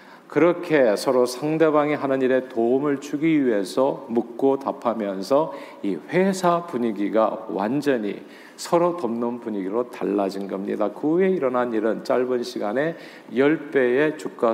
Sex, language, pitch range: male, Korean, 115-155 Hz